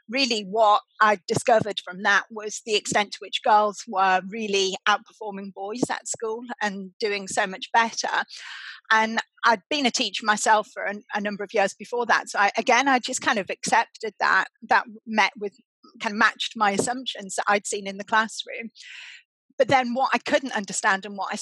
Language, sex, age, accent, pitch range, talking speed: English, female, 40-59, British, 205-240 Hz, 190 wpm